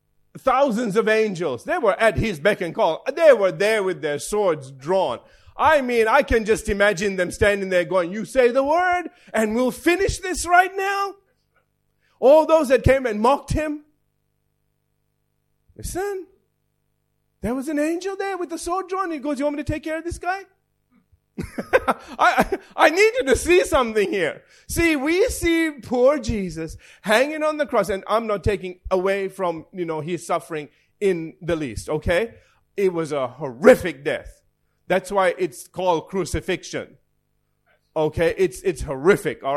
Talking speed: 165 wpm